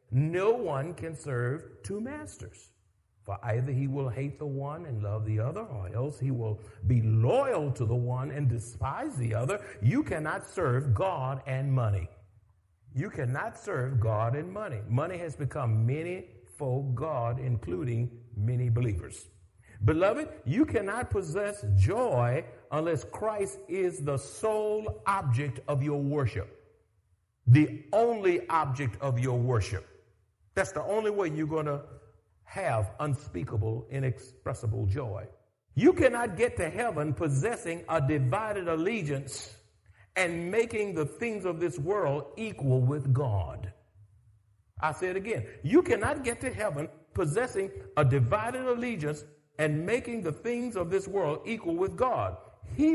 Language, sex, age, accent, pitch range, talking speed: English, male, 50-69, American, 110-165 Hz, 140 wpm